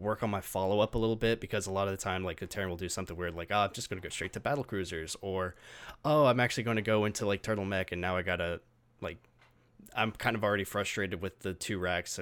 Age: 20-39